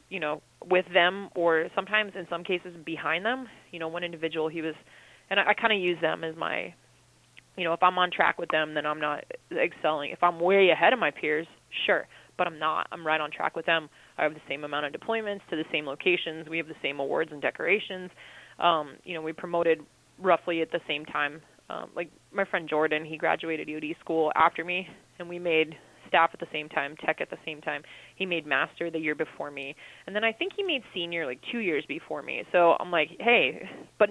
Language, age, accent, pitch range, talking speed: English, 20-39, American, 160-195 Hz, 230 wpm